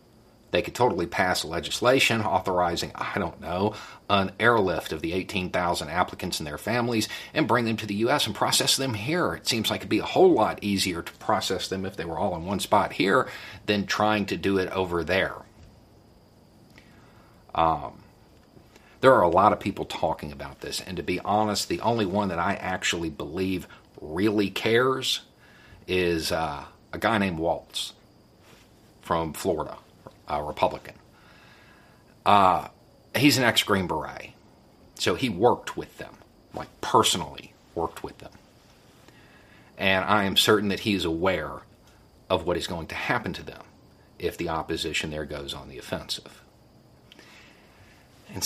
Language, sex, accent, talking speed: English, male, American, 160 wpm